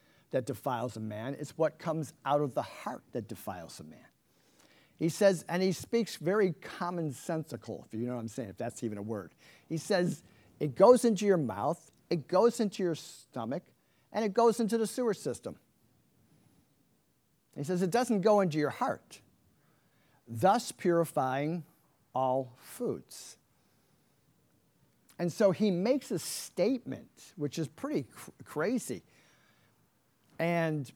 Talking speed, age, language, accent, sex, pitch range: 145 wpm, 50-69, English, American, male, 130-185 Hz